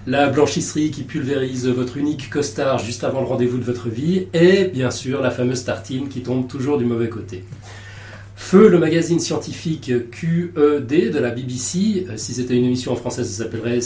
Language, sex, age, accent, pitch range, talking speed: French, male, 30-49, French, 120-150 Hz, 180 wpm